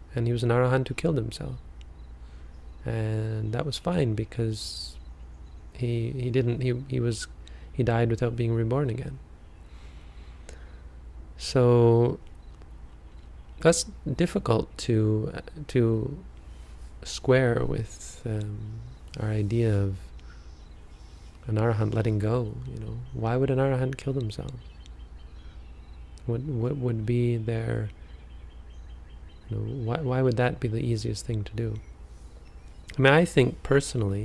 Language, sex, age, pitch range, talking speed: English, male, 20-39, 75-120 Hz, 125 wpm